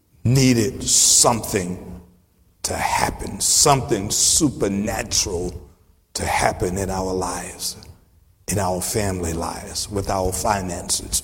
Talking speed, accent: 95 wpm, American